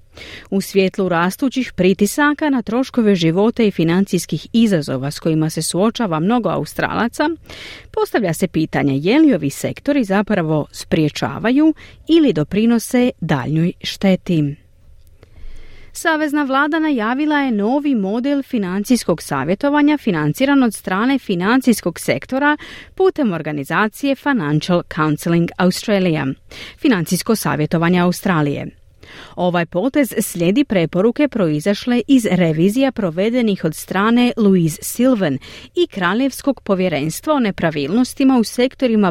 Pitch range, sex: 165-245 Hz, female